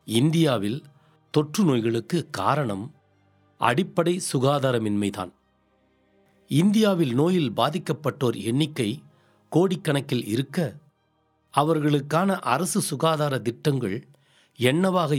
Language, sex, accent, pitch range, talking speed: Tamil, male, native, 115-155 Hz, 65 wpm